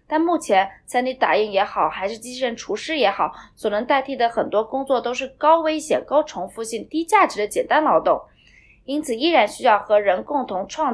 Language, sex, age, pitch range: Chinese, female, 20-39, 215-295 Hz